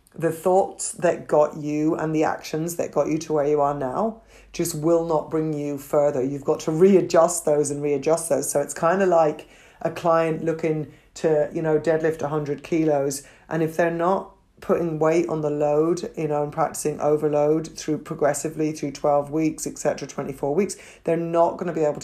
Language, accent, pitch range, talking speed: English, British, 145-165 Hz, 195 wpm